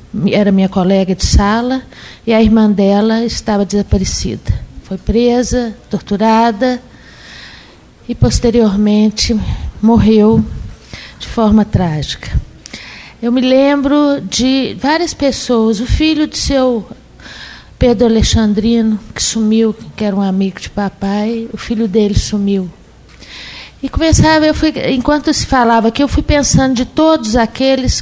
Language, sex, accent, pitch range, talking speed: Portuguese, female, Brazilian, 205-250 Hz, 125 wpm